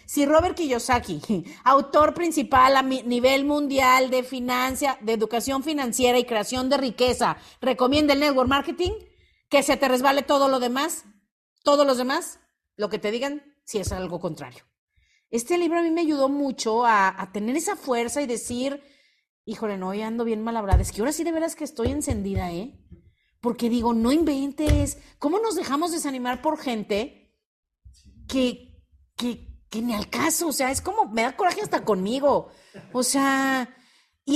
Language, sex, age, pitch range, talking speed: Spanish, female, 40-59, 210-280 Hz, 170 wpm